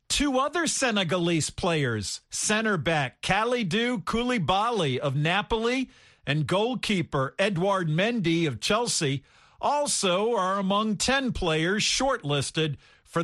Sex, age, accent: male, 50-69, American